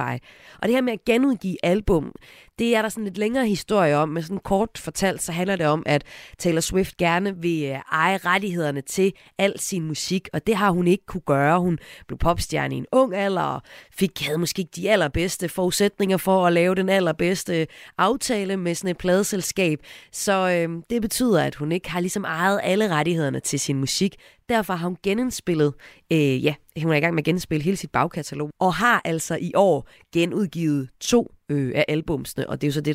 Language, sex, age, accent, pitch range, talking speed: Danish, female, 30-49, native, 155-200 Hz, 200 wpm